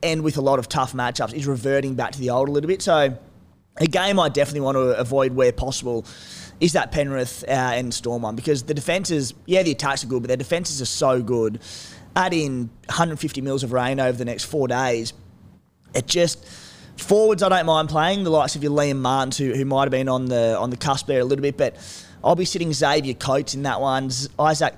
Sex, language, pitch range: male, English, 125-150 Hz